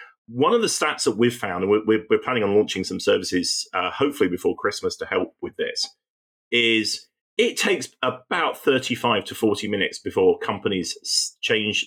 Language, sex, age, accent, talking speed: English, male, 40-59, British, 170 wpm